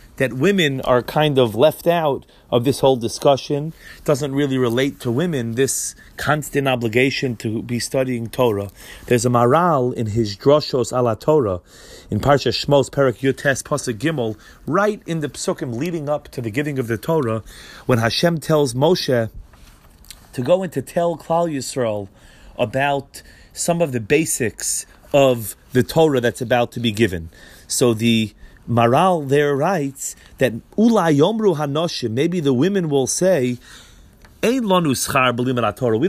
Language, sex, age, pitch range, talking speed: English, male, 30-49, 120-155 Hz, 145 wpm